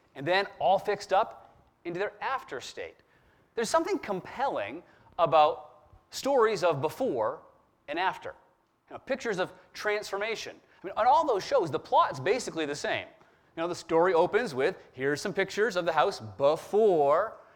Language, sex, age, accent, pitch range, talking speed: English, male, 30-49, American, 180-275 Hz, 160 wpm